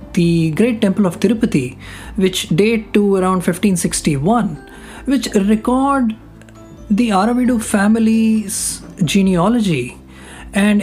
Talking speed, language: 95 wpm, English